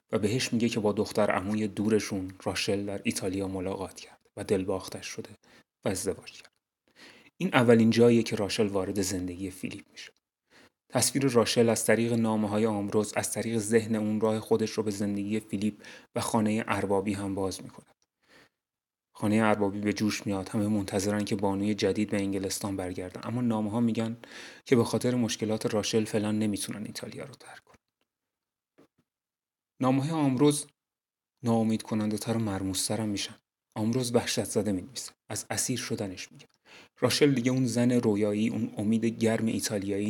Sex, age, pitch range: male, 30-49, 100-115 Hz